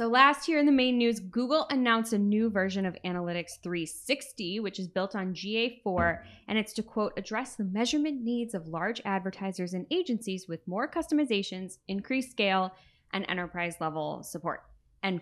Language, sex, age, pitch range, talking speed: English, female, 20-39, 175-225 Hz, 170 wpm